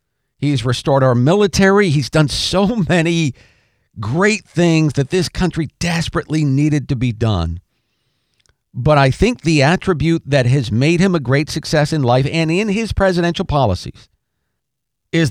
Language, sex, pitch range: English, male, 115-150 Hz